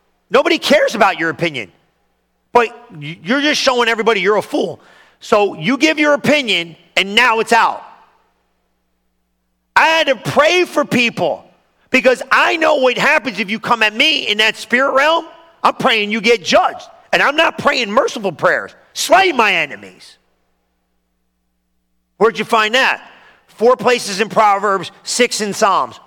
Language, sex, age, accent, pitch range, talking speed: English, male, 40-59, American, 180-265 Hz, 155 wpm